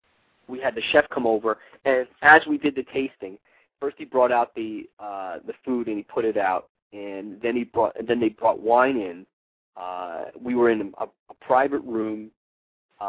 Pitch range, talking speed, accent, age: 100-130 Hz, 195 wpm, American, 30-49